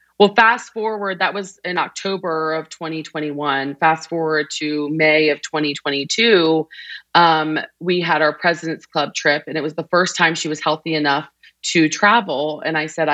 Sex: female